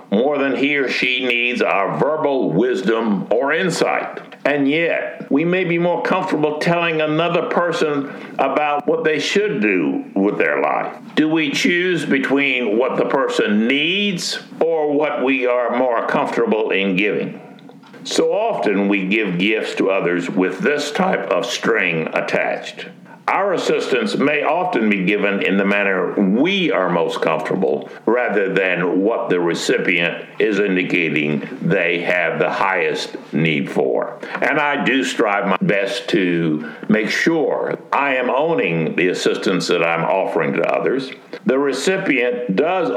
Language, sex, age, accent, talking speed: English, male, 60-79, American, 150 wpm